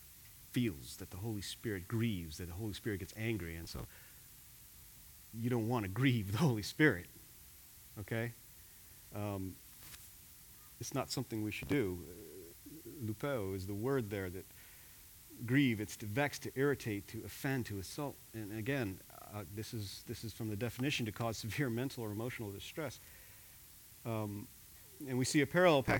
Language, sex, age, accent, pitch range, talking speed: English, male, 40-59, American, 100-125 Hz, 155 wpm